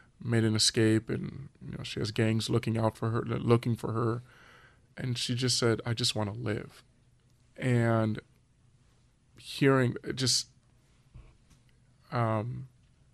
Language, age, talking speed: English, 20-39, 130 wpm